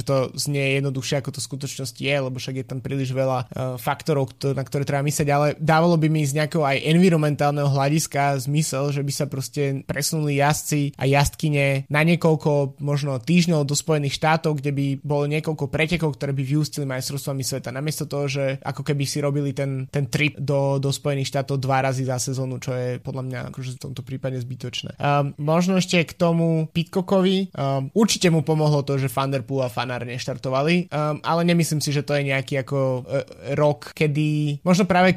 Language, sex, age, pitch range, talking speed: Slovak, male, 20-39, 135-155 Hz, 190 wpm